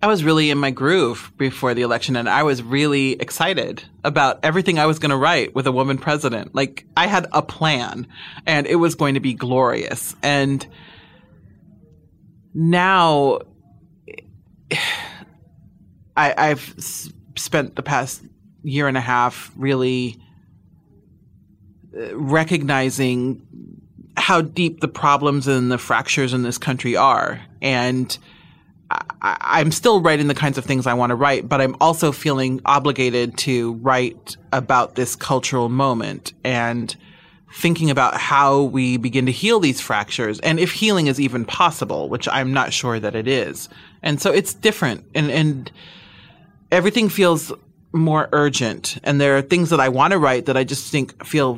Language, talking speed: English, 150 wpm